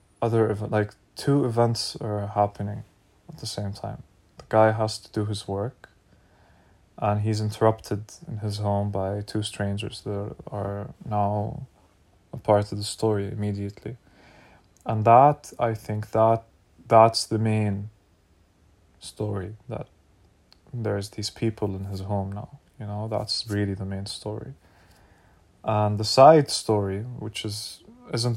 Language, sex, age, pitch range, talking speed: English, male, 20-39, 95-110 Hz, 140 wpm